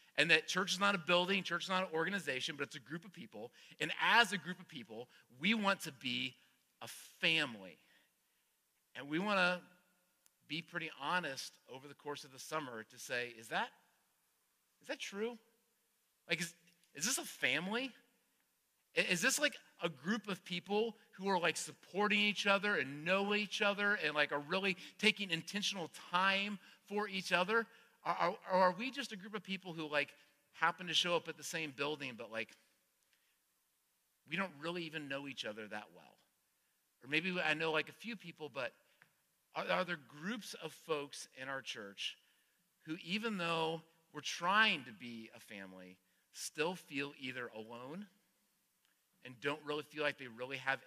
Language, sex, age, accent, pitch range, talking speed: English, male, 40-59, American, 140-195 Hz, 180 wpm